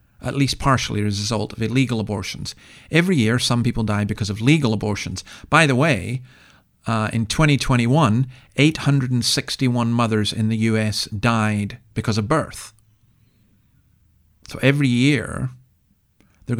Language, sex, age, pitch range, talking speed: English, male, 40-59, 105-125 Hz, 135 wpm